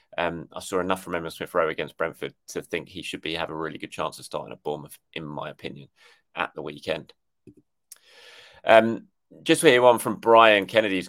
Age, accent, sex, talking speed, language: 20-39, British, male, 205 wpm, English